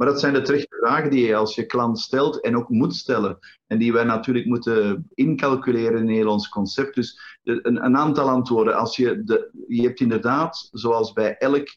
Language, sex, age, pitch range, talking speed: Dutch, male, 50-69, 115-140 Hz, 205 wpm